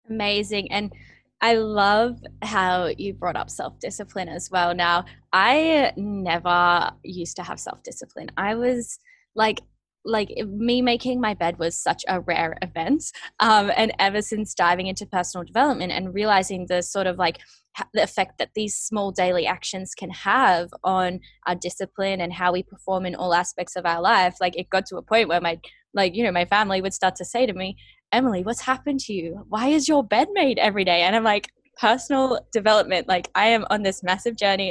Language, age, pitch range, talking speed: English, 10-29, 180-225 Hz, 190 wpm